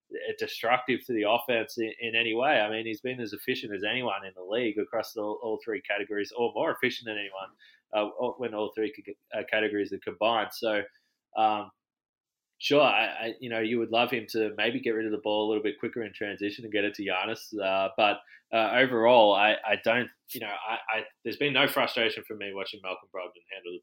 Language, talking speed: English, 220 wpm